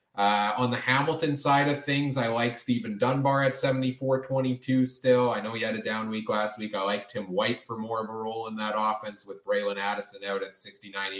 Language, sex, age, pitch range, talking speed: English, male, 20-39, 105-140 Hz, 220 wpm